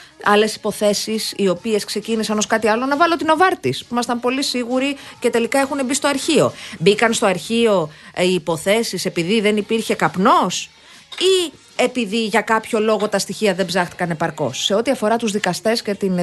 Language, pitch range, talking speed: Greek, 155-215 Hz, 180 wpm